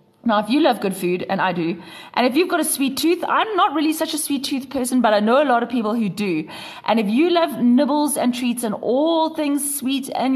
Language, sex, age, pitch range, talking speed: English, female, 20-39, 195-270 Hz, 260 wpm